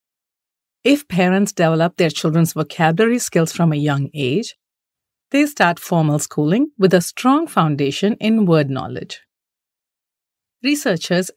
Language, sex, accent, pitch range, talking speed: English, female, Indian, 165-220 Hz, 120 wpm